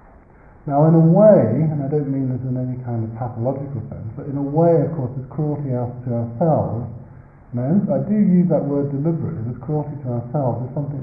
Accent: British